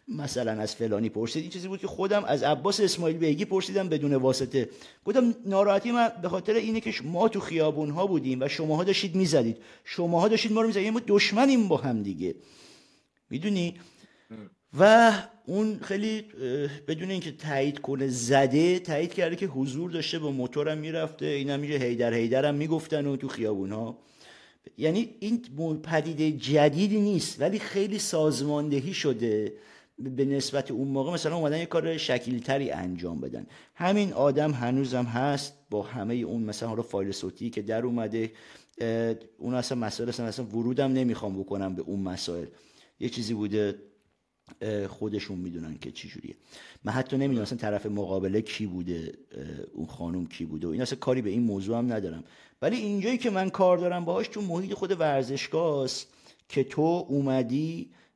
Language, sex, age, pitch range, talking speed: Persian, male, 50-69, 115-180 Hz, 160 wpm